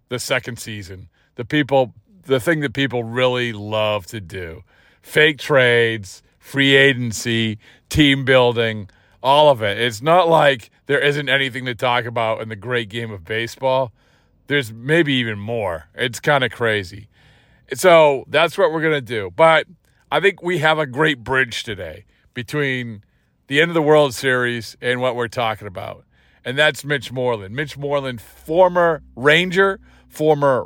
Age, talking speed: 40-59, 160 wpm